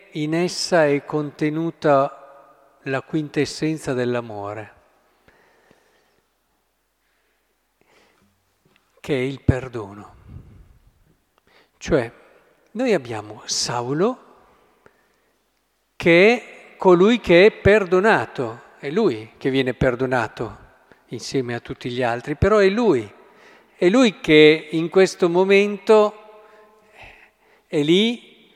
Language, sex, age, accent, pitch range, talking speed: Italian, male, 50-69, native, 130-170 Hz, 90 wpm